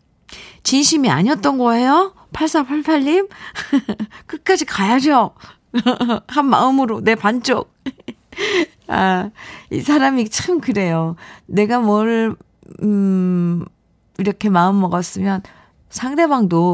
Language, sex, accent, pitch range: Korean, female, native, 170-245 Hz